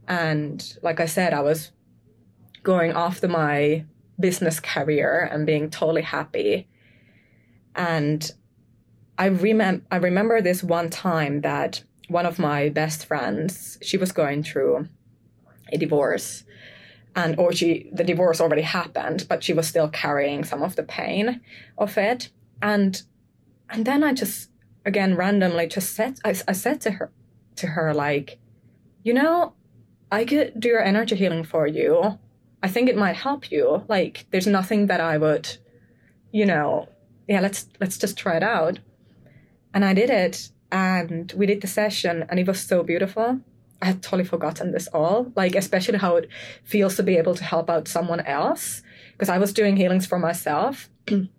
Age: 20-39